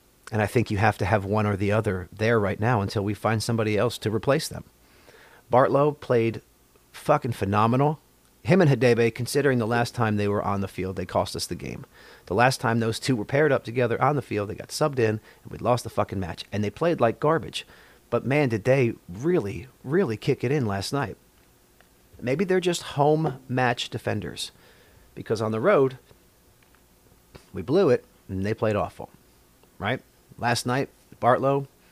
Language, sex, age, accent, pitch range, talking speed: English, male, 40-59, American, 100-125 Hz, 190 wpm